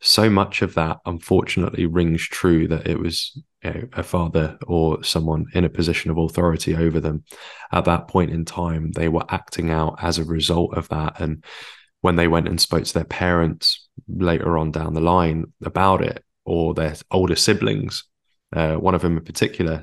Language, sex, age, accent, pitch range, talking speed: English, male, 20-39, British, 80-95 Hz, 190 wpm